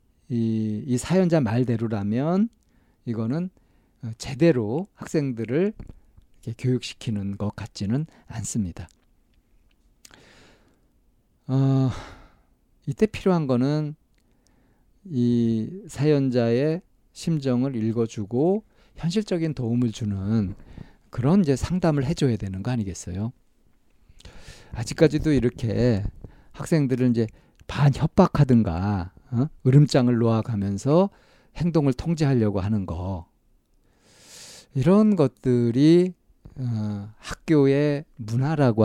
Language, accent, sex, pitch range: Korean, native, male, 110-150 Hz